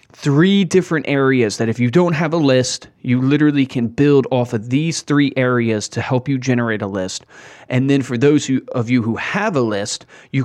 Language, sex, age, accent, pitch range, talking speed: English, male, 30-49, American, 115-135 Hz, 205 wpm